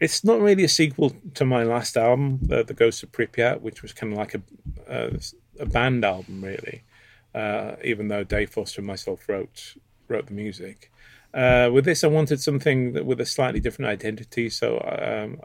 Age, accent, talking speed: 30-49, British, 195 wpm